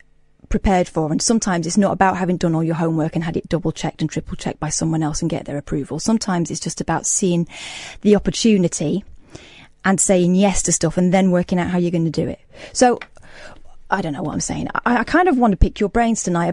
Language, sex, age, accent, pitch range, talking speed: English, female, 30-49, British, 170-215 Hz, 240 wpm